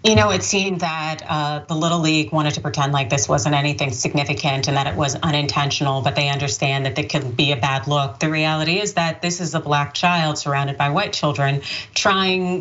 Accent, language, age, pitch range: American, English, 30-49, 150-180 Hz